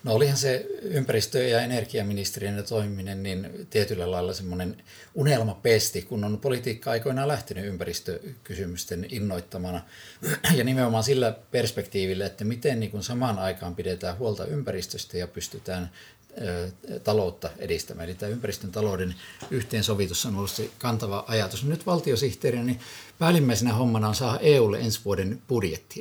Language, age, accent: Finnish, 50-69, native